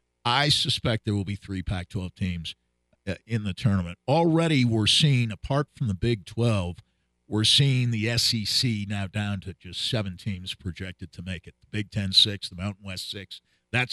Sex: male